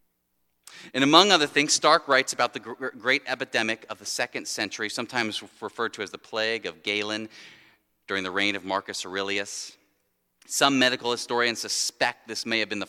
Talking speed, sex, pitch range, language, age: 170 wpm, male, 100-135 Hz, English, 30-49